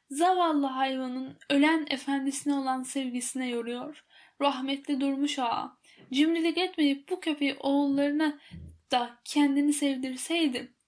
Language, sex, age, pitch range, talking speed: Turkish, female, 0-19, 245-295 Hz, 100 wpm